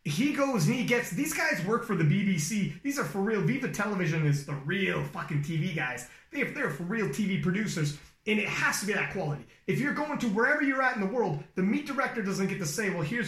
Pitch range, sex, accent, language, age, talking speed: 170-235 Hz, male, American, English, 30-49, 250 wpm